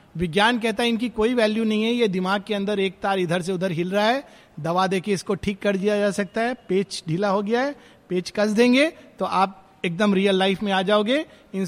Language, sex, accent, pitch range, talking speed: Hindi, male, native, 170-220 Hz, 235 wpm